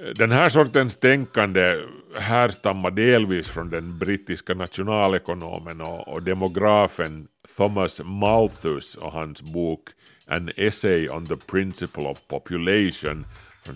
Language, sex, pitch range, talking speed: Swedish, male, 85-110 Hz, 110 wpm